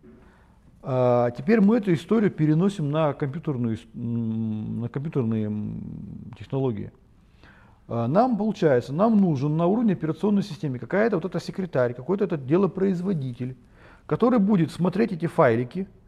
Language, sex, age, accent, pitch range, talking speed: Russian, male, 40-59, native, 120-170 Hz, 110 wpm